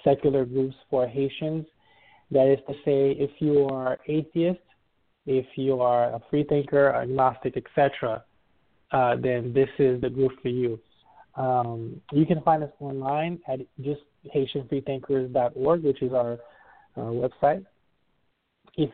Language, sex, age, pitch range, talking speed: English, male, 20-39, 125-145 Hz, 135 wpm